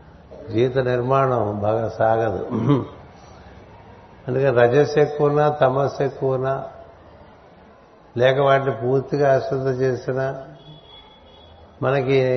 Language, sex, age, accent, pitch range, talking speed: Telugu, male, 60-79, native, 115-135 Hz, 75 wpm